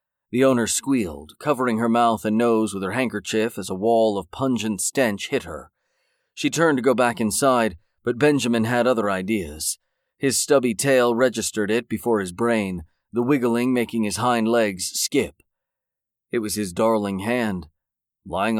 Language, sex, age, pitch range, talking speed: English, male, 40-59, 105-125 Hz, 165 wpm